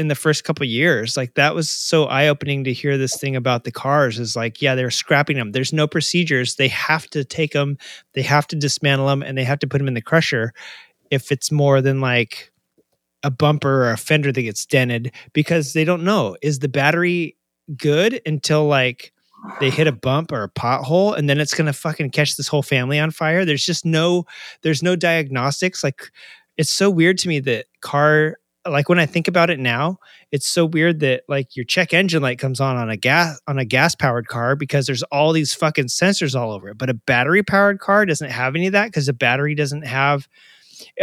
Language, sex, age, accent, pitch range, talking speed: English, male, 30-49, American, 135-165 Hz, 220 wpm